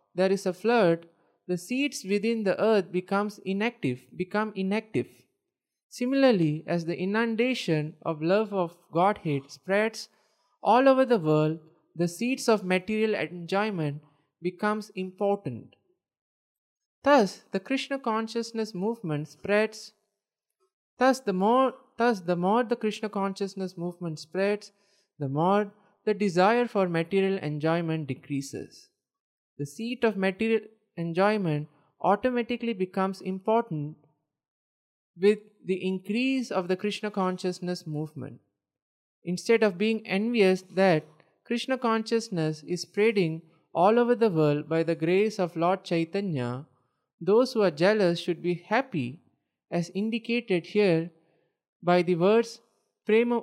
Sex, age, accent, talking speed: male, 20-39, Indian, 120 wpm